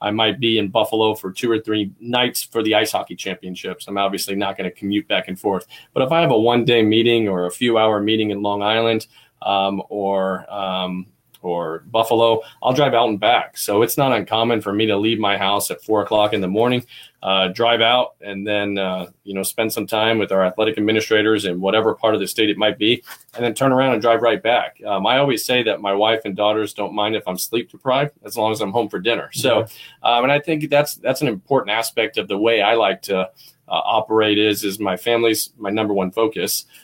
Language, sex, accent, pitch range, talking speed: English, male, American, 100-115 Hz, 240 wpm